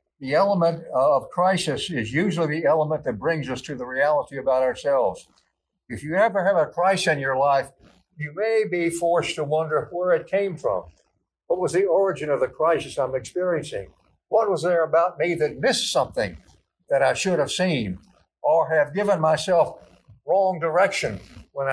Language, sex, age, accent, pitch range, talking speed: English, male, 60-79, American, 140-185 Hz, 175 wpm